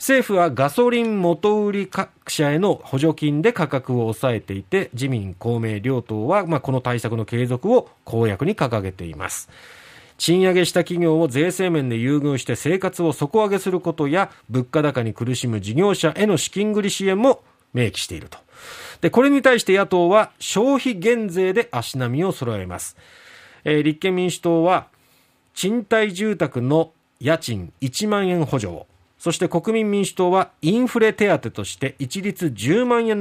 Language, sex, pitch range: Japanese, male, 125-195 Hz